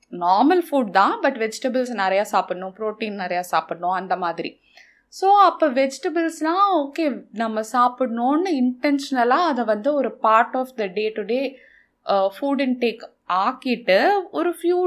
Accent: native